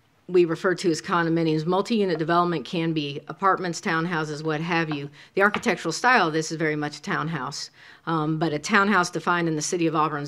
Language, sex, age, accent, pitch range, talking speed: English, female, 40-59, American, 150-170 Hz, 200 wpm